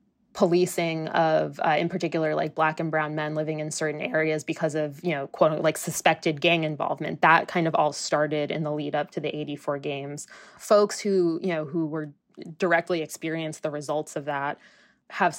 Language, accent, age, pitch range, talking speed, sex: English, American, 20-39, 150-170 Hz, 190 wpm, female